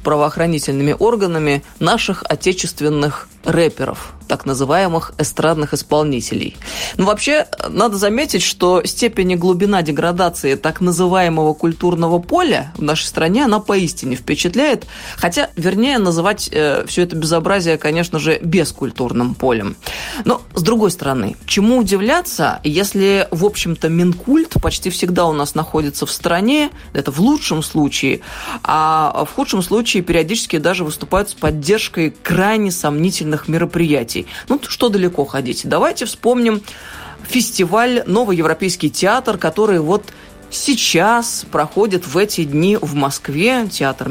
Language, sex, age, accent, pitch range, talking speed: Russian, female, 20-39, native, 150-200 Hz, 125 wpm